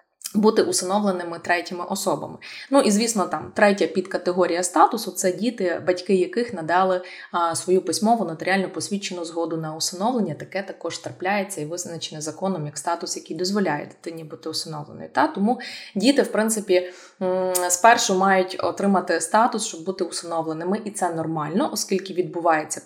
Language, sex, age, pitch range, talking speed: Ukrainian, female, 20-39, 165-200 Hz, 140 wpm